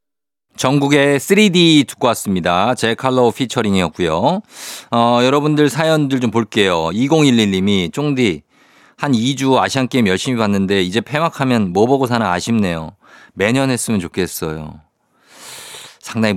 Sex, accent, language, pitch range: male, native, Korean, 95-130 Hz